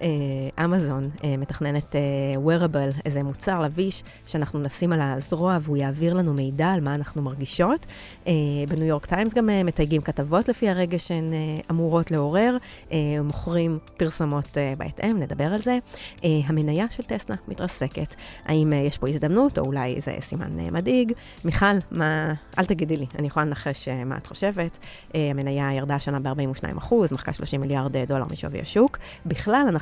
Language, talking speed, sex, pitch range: Hebrew, 140 wpm, female, 140-175 Hz